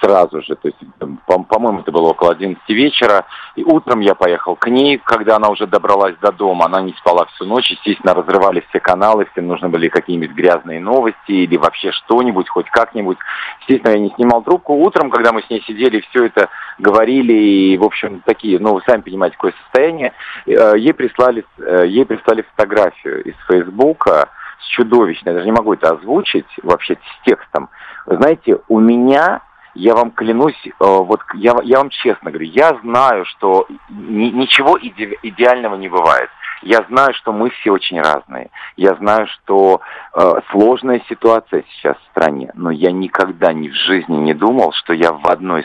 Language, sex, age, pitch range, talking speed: Russian, male, 40-59, 95-130 Hz, 170 wpm